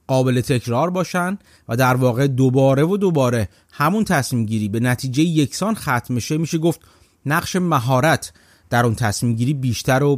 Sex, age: male, 30-49